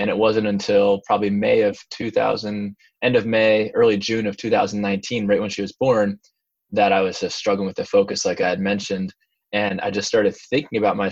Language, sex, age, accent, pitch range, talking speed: English, male, 20-39, American, 100-125 Hz, 210 wpm